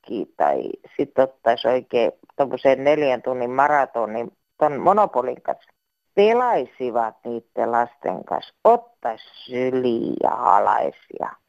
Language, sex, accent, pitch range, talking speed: Finnish, female, native, 130-195 Hz, 100 wpm